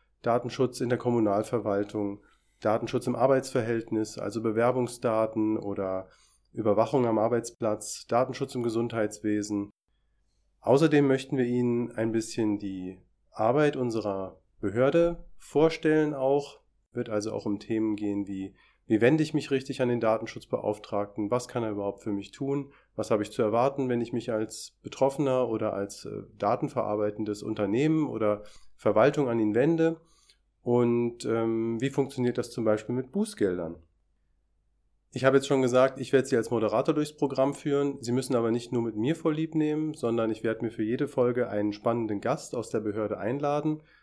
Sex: male